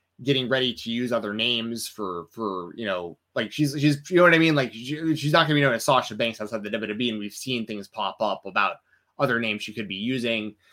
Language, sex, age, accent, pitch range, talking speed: English, male, 20-39, American, 105-140 Hz, 250 wpm